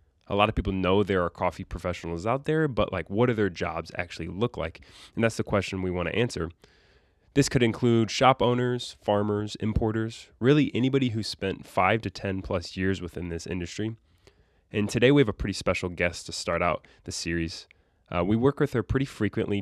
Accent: American